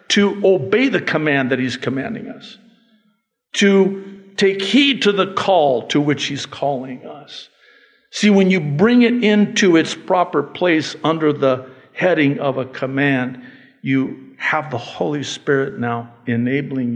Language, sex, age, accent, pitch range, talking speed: English, male, 50-69, American, 130-190 Hz, 145 wpm